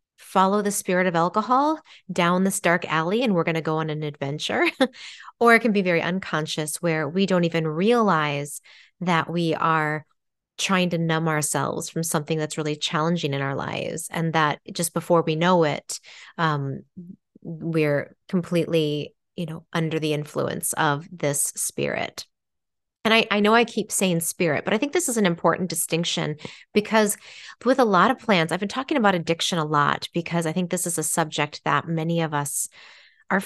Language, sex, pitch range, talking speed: English, female, 160-200 Hz, 185 wpm